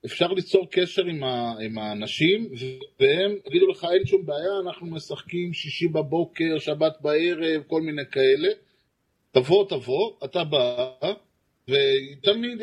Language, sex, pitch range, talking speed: Hebrew, male, 130-205 Hz, 130 wpm